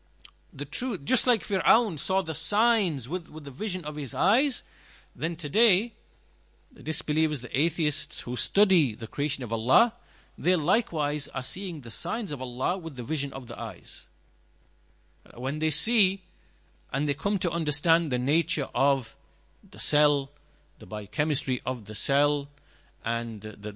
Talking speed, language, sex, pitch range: 155 wpm, English, male, 130-180 Hz